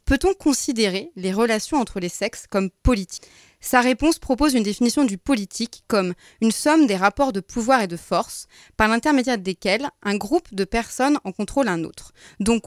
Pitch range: 205-265 Hz